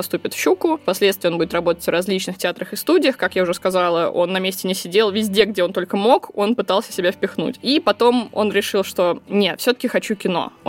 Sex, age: female, 20-39